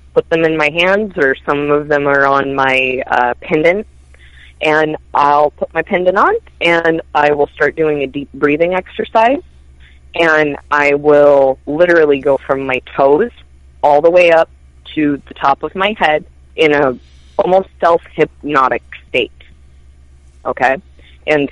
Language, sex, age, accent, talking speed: English, female, 20-39, American, 150 wpm